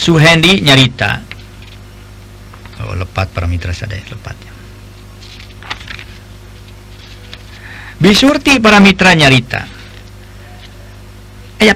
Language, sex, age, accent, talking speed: Indonesian, male, 50-69, native, 65 wpm